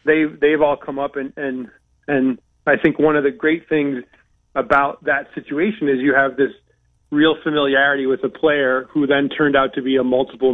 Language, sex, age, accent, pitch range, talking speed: English, male, 30-49, American, 130-145 Hz, 200 wpm